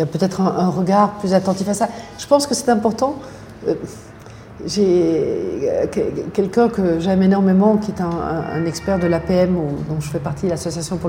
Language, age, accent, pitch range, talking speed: French, 40-59, French, 185-225 Hz, 210 wpm